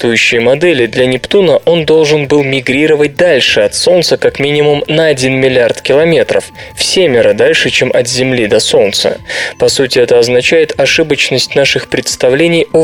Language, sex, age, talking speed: Russian, male, 20-39, 155 wpm